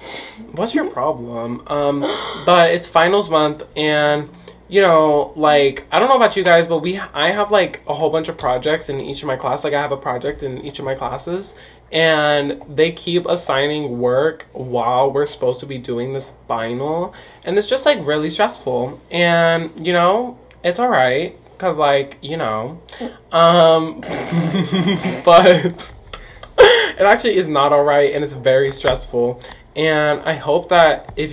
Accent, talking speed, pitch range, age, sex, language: American, 170 wpm, 140-175 Hz, 20-39, male, English